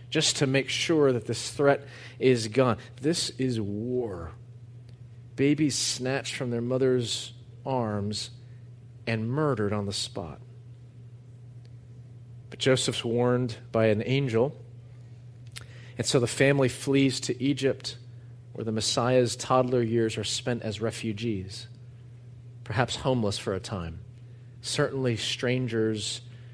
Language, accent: English, American